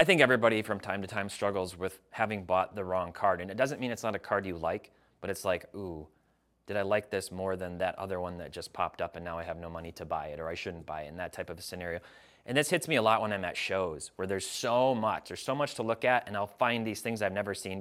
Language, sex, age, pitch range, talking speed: English, male, 30-49, 95-120 Hz, 300 wpm